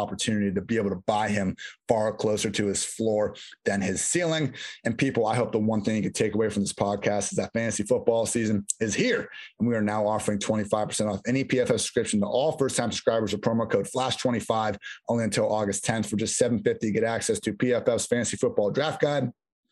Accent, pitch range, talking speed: American, 105-120 Hz, 215 wpm